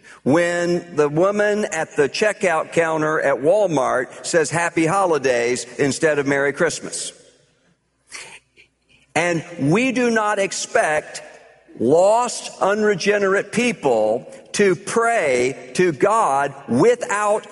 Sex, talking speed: male, 100 wpm